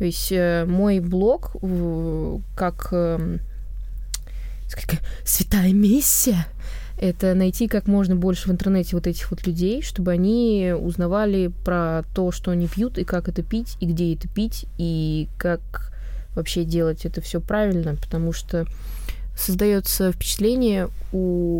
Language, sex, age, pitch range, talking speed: Russian, female, 20-39, 155-180 Hz, 135 wpm